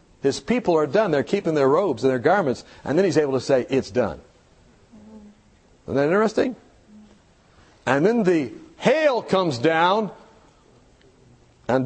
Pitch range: 125-175 Hz